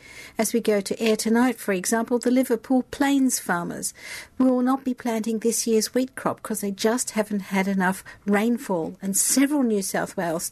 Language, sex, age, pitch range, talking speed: English, female, 60-79, 200-250 Hz, 185 wpm